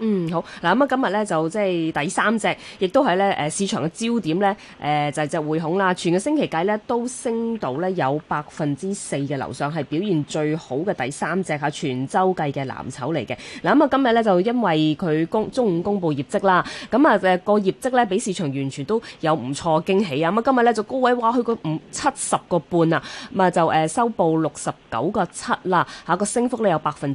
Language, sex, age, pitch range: Chinese, female, 20-39, 150-210 Hz